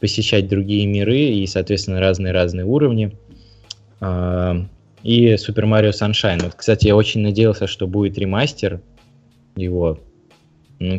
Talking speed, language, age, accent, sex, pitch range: 115 wpm, Russian, 20-39, native, male, 90-110 Hz